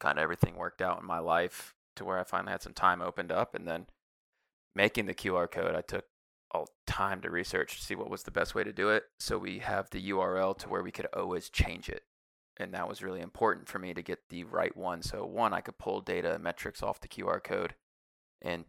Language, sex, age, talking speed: English, male, 20-39, 240 wpm